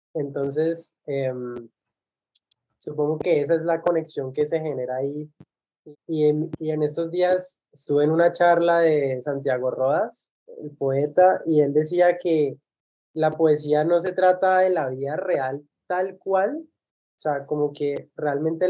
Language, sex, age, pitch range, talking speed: Spanish, male, 20-39, 145-170 Hz, 150 wpm